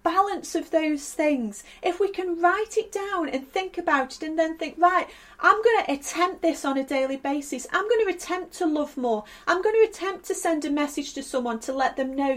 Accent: British